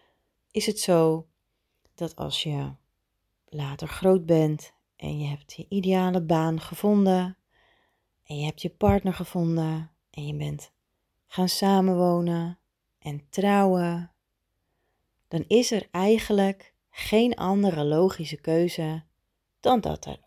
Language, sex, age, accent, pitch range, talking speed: Dutch, female, 30-49, Dutch, 145-190 Hz, 120 wpm